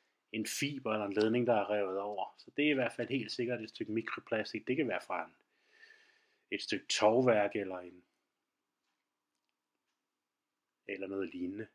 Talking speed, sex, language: 165 wpm, male, Danish